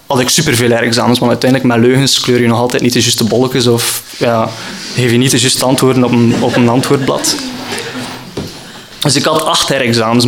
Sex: male